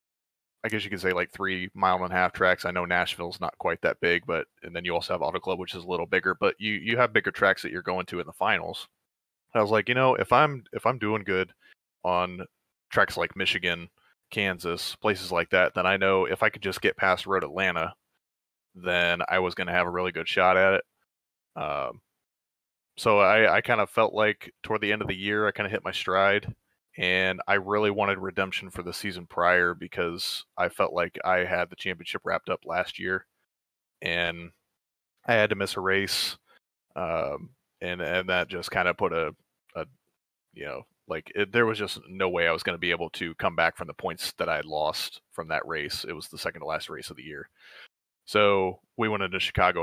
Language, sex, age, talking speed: English, male, 20-39, 225 wpm